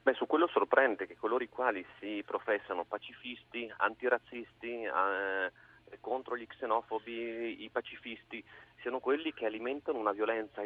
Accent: native